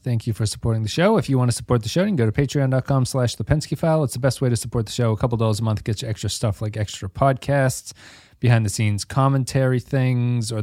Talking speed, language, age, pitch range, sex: 260 wpm, English, 30-49, 110-135 Hz, male